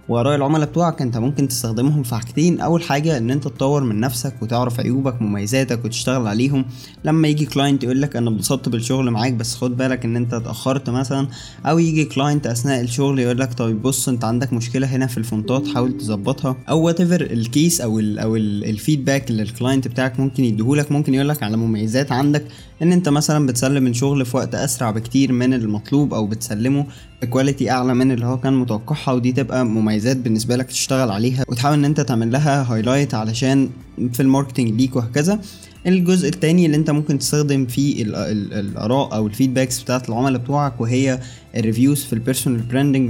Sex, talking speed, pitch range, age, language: male, 175 wpm, 120-140 Hz, 20-39, Arabic